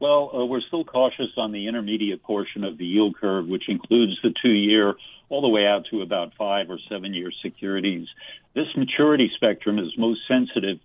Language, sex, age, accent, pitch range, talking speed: English, male, 60-79, American, 105-120 Hz, 185 wpm